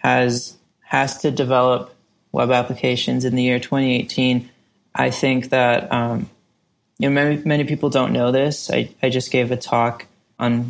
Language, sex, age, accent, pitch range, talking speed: English, male, 20-39, American, 125-140 Hz, 170 wpm